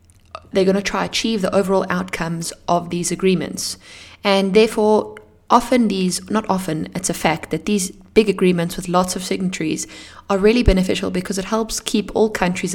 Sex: female